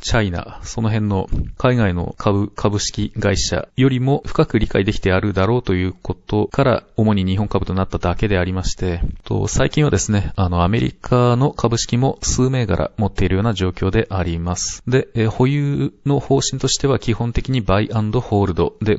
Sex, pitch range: male, 100-125 Hz